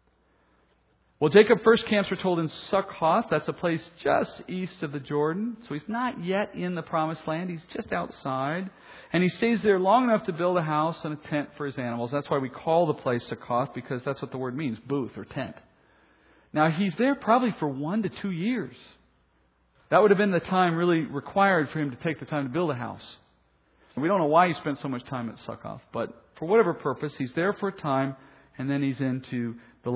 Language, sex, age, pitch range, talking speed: English, male, 40-59, 135-200 Hz, 225 wpm